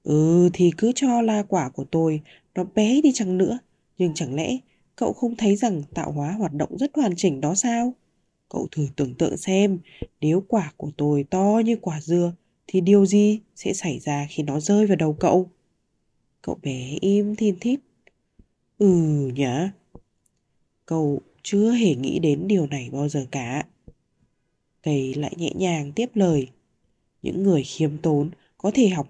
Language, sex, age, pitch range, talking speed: Vietnamese, female, 20-39, 150-205 Hz, 175 wpm